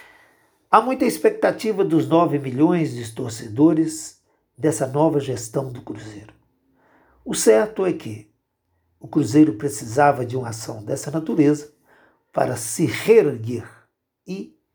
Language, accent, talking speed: Portuguese, Brazilian, 120 wpm